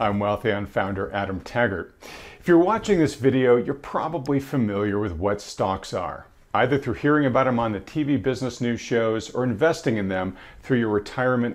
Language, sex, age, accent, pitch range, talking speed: English, male, 40-59, American, 105-140 Hz, 180 wpm